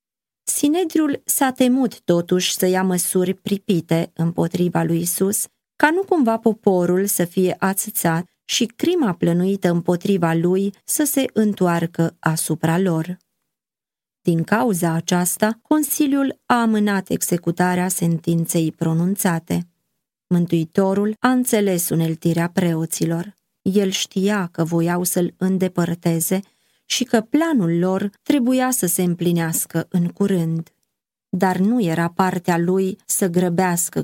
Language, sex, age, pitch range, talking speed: Romanian, female, 20-39, 170-210 Hz, 115 wpm